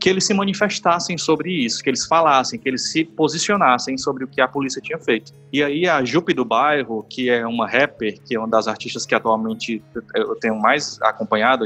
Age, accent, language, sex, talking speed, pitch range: 20-39, Brazilian, Portuguese, male, 205 wpm, 135-195 Hz